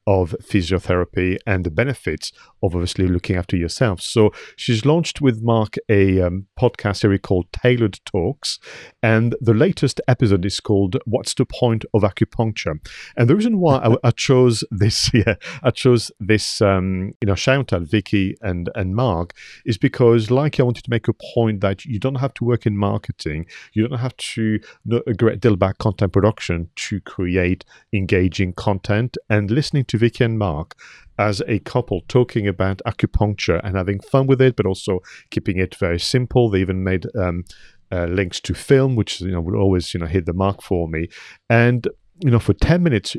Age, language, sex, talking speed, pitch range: 40-59, English, male, 190 wpm, 95-125 Hz